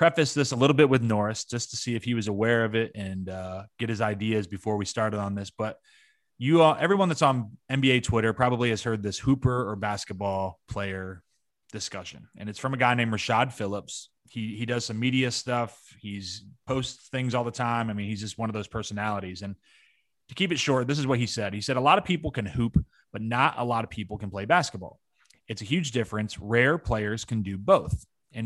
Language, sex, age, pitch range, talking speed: English, male, 30-49, 105-130 Hz, 230 wpm